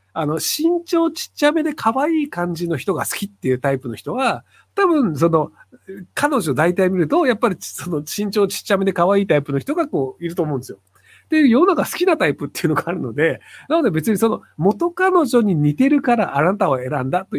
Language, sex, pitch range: Japanese, male, 140-225 Hz